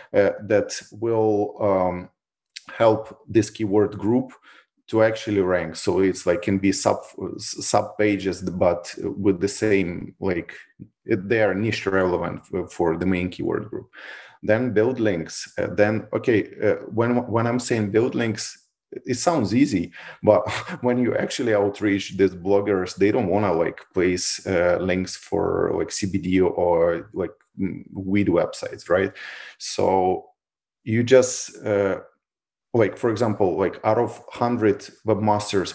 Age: 30-49